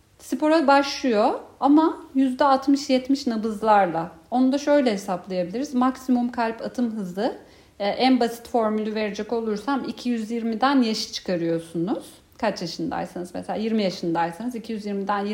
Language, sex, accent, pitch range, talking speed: Turkish, female, native, 195-255 Hz, 105 wpm